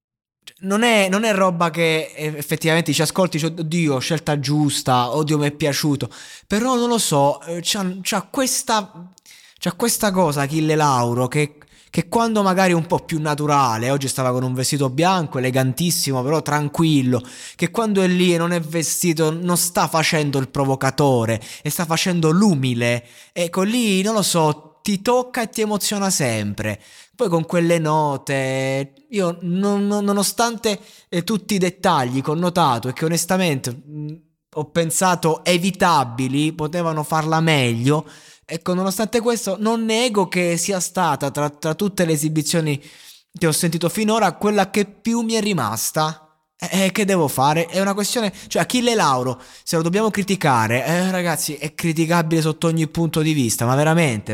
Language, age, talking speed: Italian, 20-39, 160 wpm